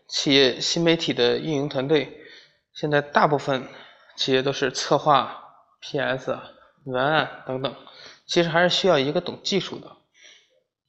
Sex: male